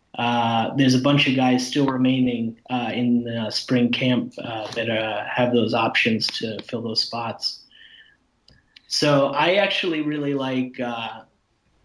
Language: English